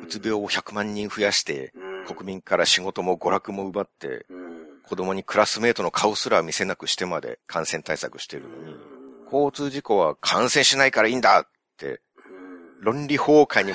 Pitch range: 100-160 Hz